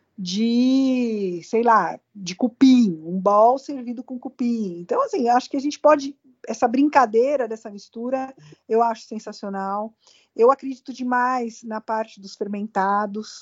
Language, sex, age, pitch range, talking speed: Portuguese, female, 50-69, 190-250 Hz, 140 wpm